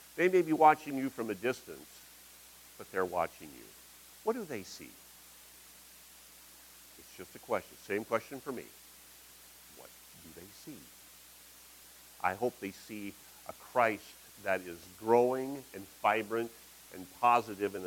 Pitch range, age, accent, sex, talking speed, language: 95-130 Hz, 50-69, American, male, 140 wpm, English